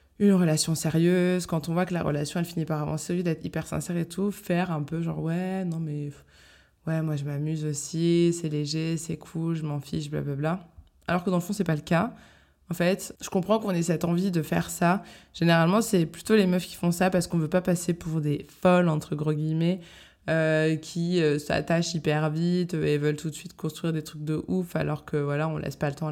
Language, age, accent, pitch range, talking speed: French, 20-39, French, 155-180 Hz, 235 wpm